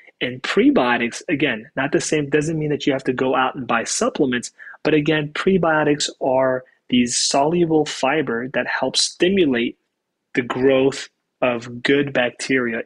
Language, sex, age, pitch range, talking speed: English, male, 20-39, 130-155 Hz, 150 wpm